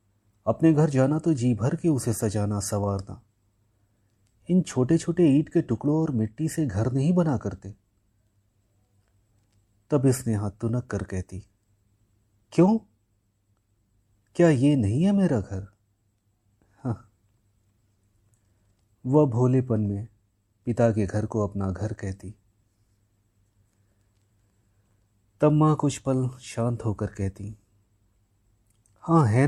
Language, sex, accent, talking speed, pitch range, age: Hindi, male, native, 115 wpm, 100-115 Hz, 30-49